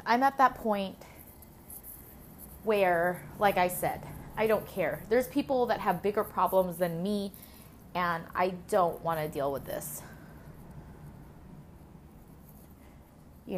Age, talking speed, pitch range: 20-39, 125 wpm, 170-210 Hz